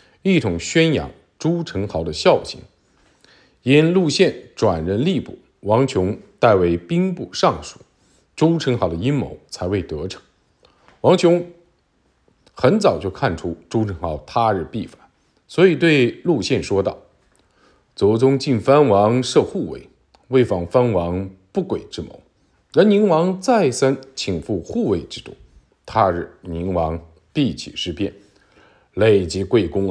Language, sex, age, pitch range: Chinese, male, 50-69, 95-155 Hz